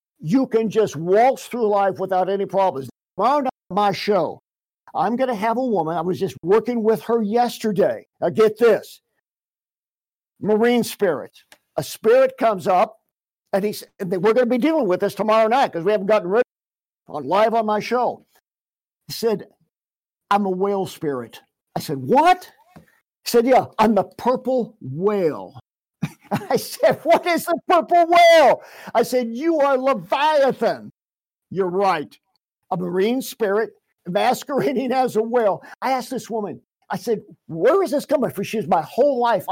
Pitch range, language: 195-260 Hz, English